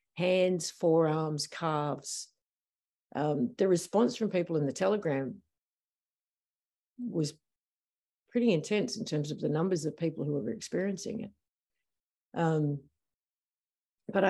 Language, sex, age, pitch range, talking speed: English, female, 50-69, 150-205 Hz, 115 wpm